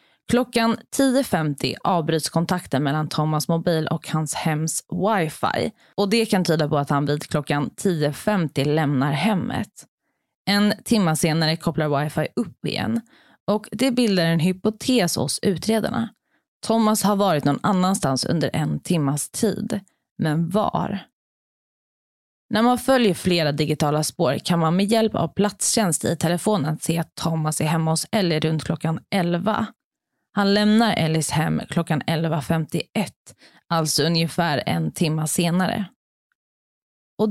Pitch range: 155-215 Hz